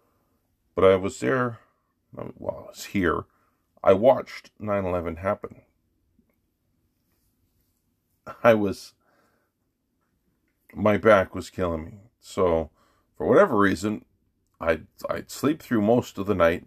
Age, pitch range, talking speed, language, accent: 40-59, 85-105 Hz, 120 wpm, English, American